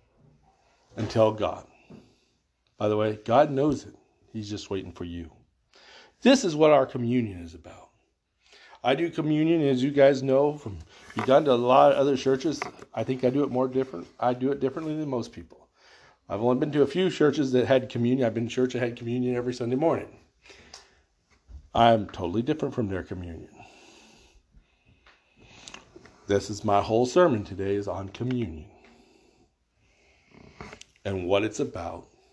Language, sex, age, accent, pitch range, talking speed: English, male, 50-69, American, 100-135 Hz, 165 wpm